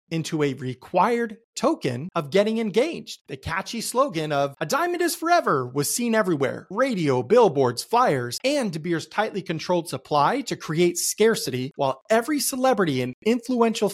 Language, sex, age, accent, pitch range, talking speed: English, male, 30-49, American, 145-220 Hz, 150 wpm